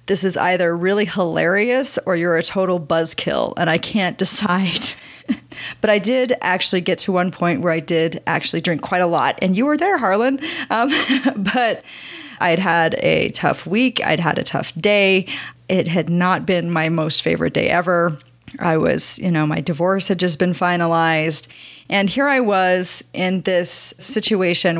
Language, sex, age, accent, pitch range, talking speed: English, female, 30-49, American, 170-200 Hz, 175 wpm